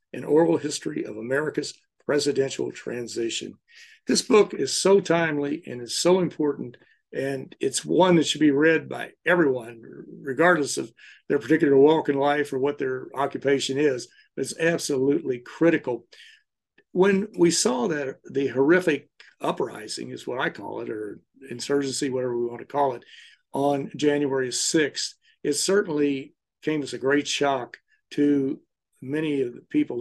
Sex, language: male, English